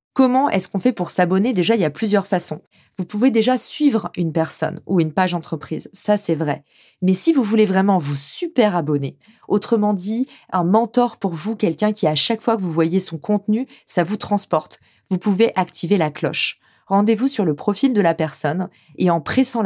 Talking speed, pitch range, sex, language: 205 wpm, 170-220 Hz, female, French